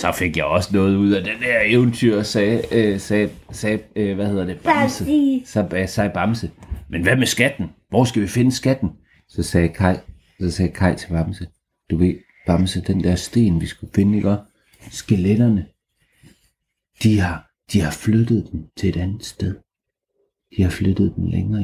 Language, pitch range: Danish, 95-115 Hz